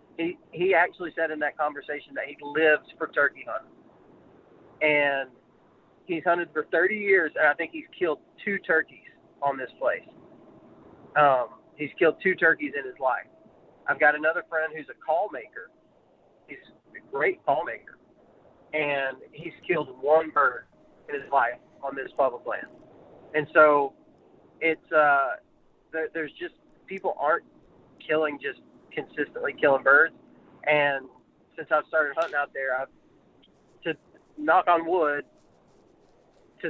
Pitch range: 145-180 Hz